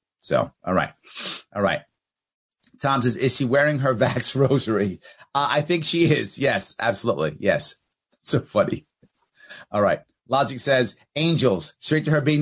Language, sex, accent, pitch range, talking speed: English, male, American, 130-180 Hz, 155 wpm